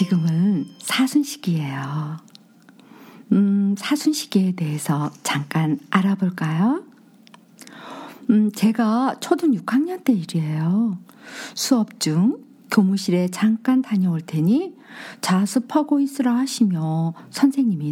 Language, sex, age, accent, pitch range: Korean, female, 50-69, native, 185-265 Hz